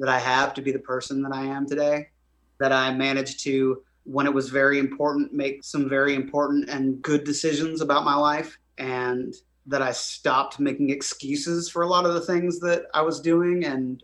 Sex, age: male, 30-49